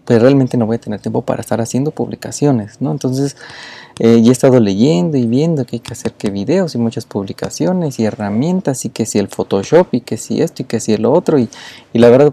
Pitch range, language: 110-145 Hz, Spanish